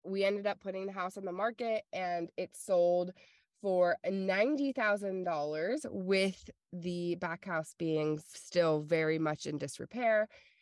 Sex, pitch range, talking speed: female, 165-195 Hz, 135 wpm